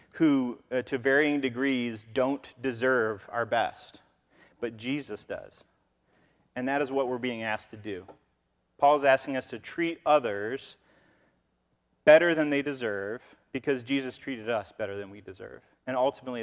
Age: 30-49